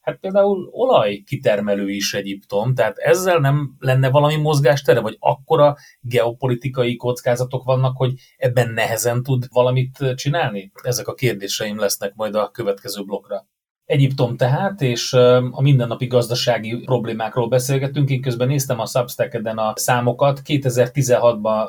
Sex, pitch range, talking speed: male, 110-130 Hz, 125 wpm